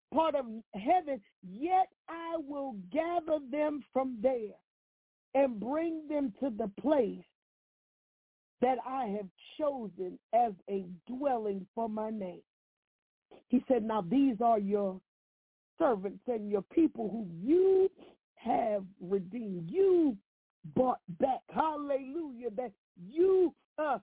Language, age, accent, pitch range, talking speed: English, 50-69, American, 200-275 Hz, 115 wpm